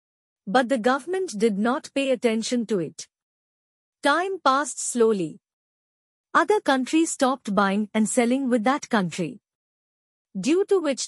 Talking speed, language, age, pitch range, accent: 130 wpm, English, 50-69, 215-275 Hz, Indian